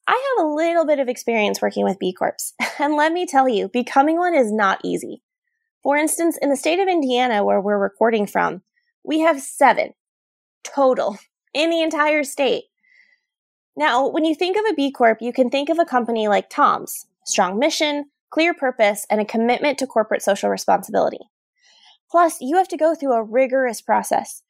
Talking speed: 185 wpm